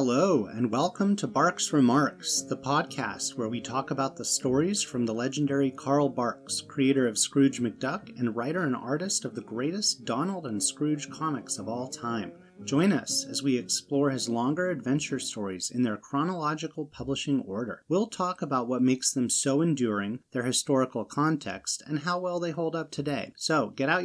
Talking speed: 180 wpm